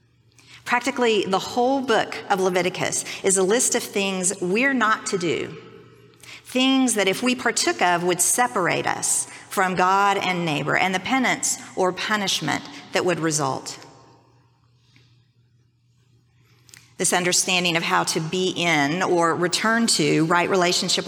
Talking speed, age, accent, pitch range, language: 135 wpm, 50-69, American, 155-205 Hz, English